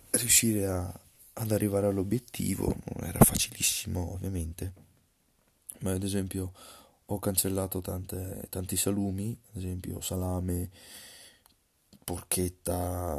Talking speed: 90 wpm